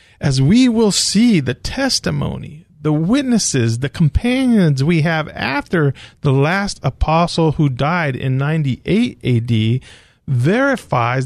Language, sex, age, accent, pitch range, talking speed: English, male, 40-59, American, 125-185 Hz, 115 wpm